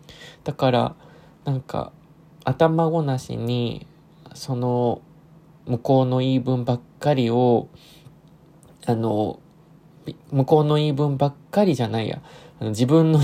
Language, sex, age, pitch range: Japanese, male, 20-39, 135-175 Hz